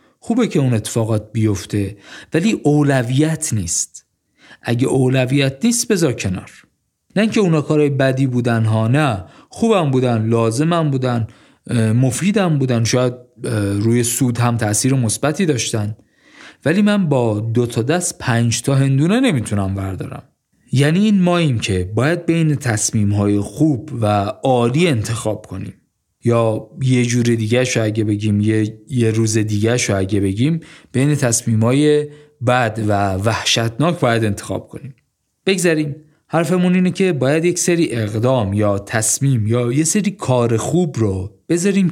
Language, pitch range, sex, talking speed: Persian, 110-150 Hz, male, 135 wpm